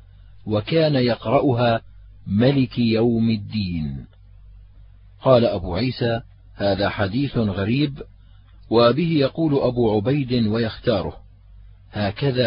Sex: male